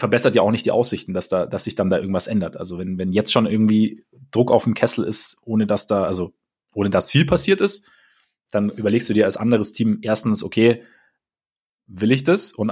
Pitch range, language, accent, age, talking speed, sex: 105-120 Hz, German, German, 30-49, 220 wpm, male